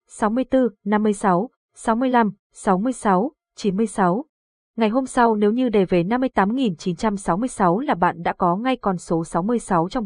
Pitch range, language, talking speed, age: 180-235 Hz, Vietnamese, 130 wpm, 20-39